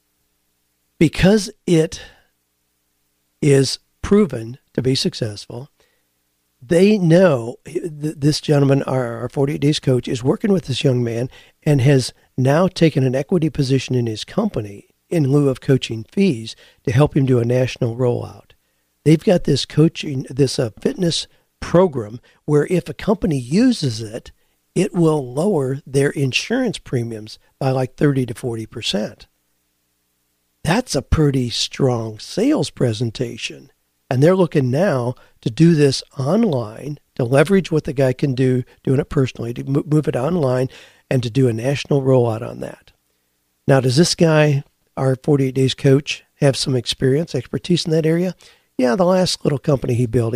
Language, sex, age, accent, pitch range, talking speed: English, male, 50-69, American, 120-155 Hz, 150 wpm